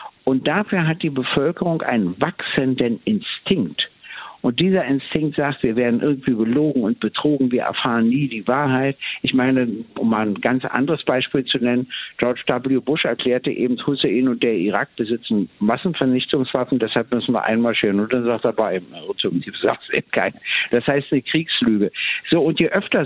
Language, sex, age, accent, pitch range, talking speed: German, male, 60-79, German, 125-165 Hz, 160 wpm